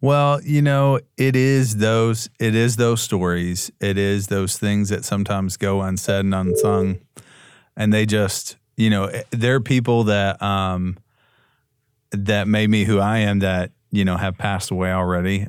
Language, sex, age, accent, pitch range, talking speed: English, male, 30-49, American, 95-115 Hz, 165 wpm